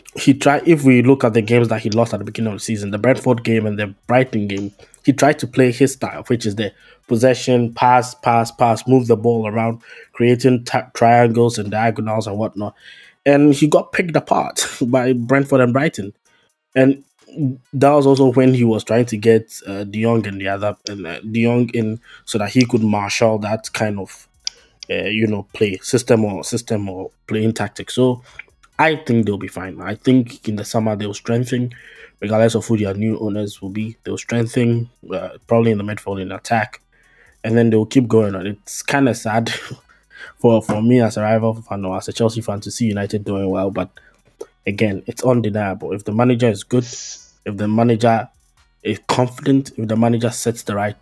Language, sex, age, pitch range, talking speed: English, male, 20-39, 105-125 Hz, 205 wpm